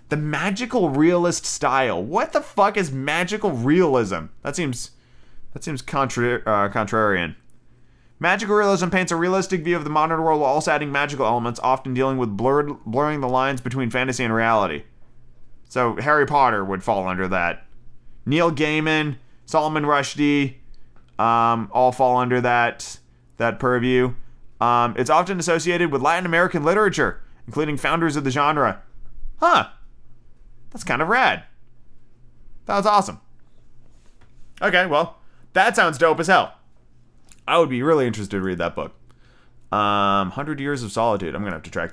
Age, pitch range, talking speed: 30-49, 120-155 Hz, 155 wpm